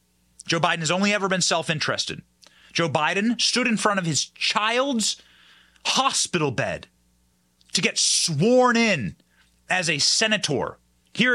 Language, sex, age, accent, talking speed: English, male, 30-49, American, 130 wpm